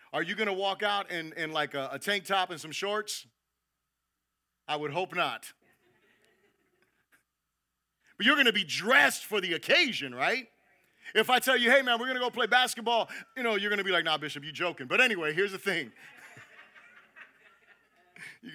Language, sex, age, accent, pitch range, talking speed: English, male, 40-59, American, 195-250 Hz, 190 wpm